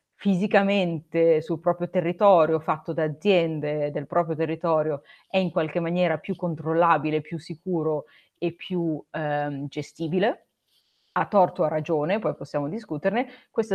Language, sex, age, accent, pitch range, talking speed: Italian, female, 30-49, native, 160-190 Hz, 135 wpm